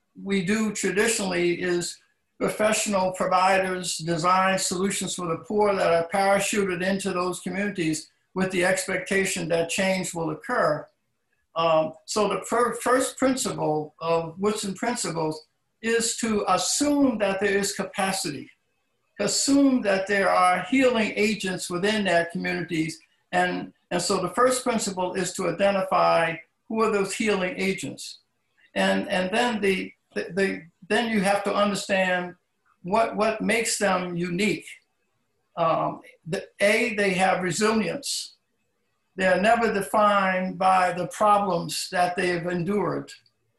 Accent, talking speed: American, 130 wpm